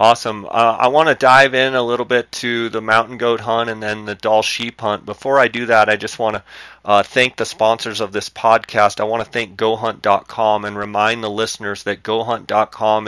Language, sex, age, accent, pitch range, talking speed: English, male, 30-49, American, 100-115 Hz, 210 wpm